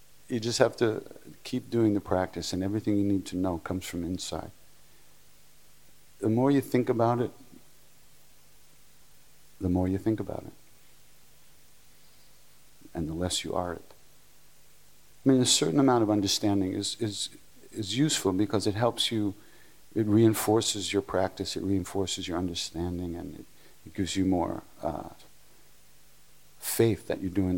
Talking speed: 150 wpm